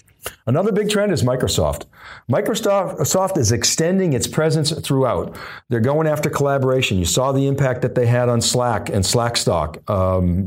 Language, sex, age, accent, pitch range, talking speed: English, male, 50-69, American, 100-140 Hz, 160 wpm